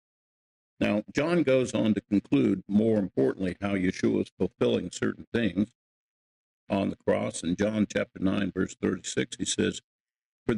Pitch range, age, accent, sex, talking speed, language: 95-120 Hz, 50-69, American, male, 145 wpm, English